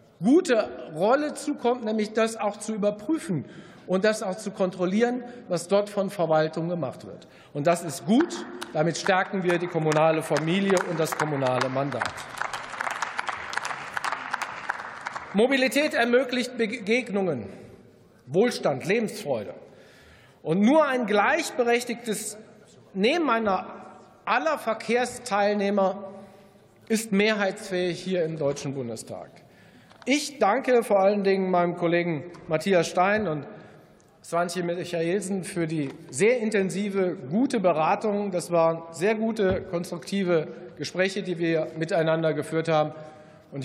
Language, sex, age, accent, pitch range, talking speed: German, male, 40-59, German, 165-215 Hz, 110 wpm